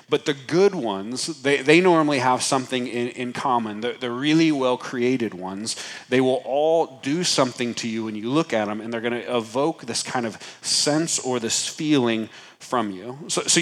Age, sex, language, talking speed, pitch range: 30-49, male, English, 200 wpm, 120-150 Hz